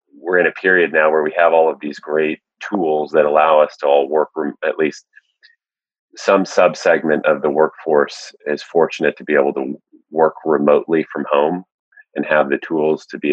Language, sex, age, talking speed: English, male, 30-49, 200 wpm